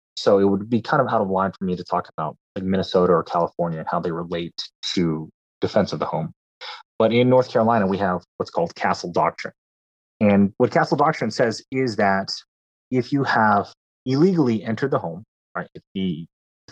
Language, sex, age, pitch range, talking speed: English, male, 30-49, 85-125 Hz, 195 wpm